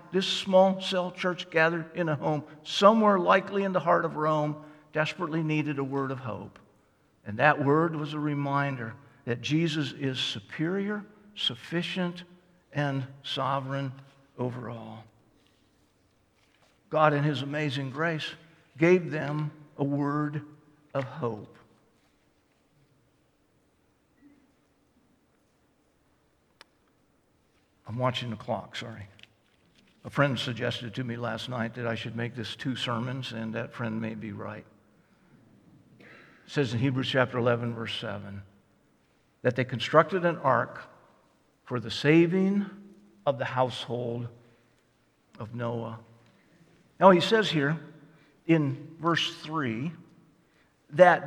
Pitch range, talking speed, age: 120-165 Hz, 120 wpm, 60-79